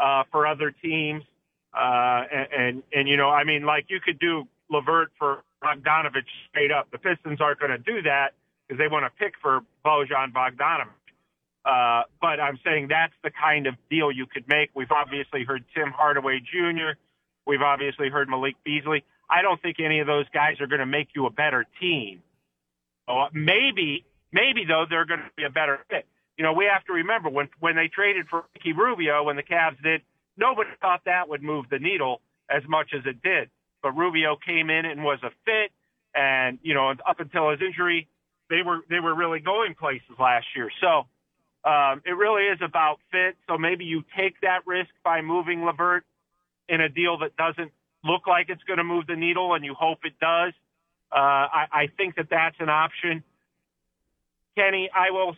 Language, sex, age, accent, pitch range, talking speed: English, male, 40-59, American, 140-170 Hz, 195 wpm